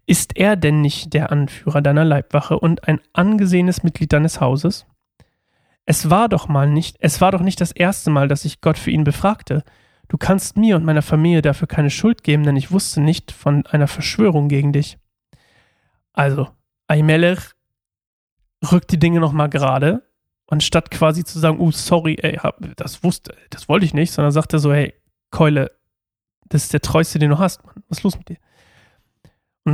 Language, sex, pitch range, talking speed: German, male, 145-165 Hz, 190 wpm